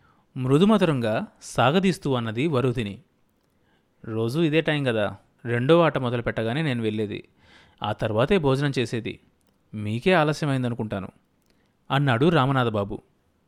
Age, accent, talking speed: 30-49, native, 100 wpm